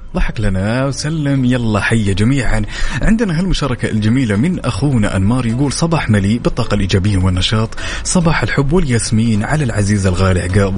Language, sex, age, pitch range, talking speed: Arabic, male, 30-49, 100-140 Hz, 140 wpm